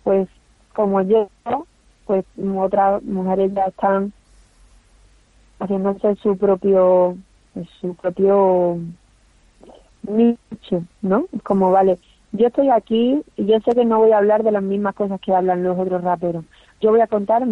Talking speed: 135 wpm